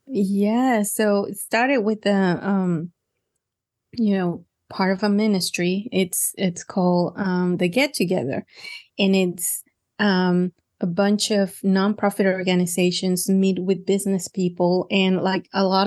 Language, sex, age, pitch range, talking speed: English, female, 20-39, 185-225 Hz, 130 wpm